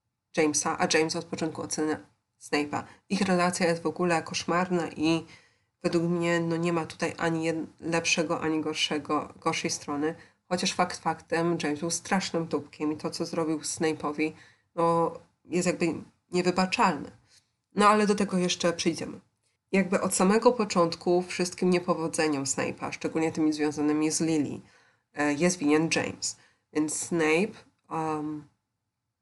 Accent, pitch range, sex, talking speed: native, 150-175 Hz, female, 135 wpm